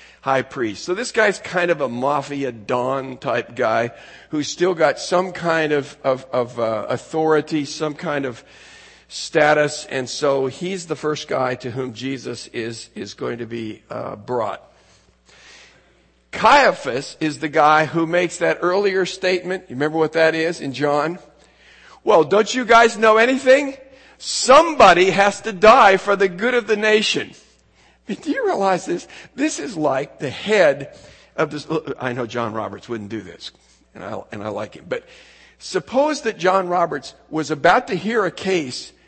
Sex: male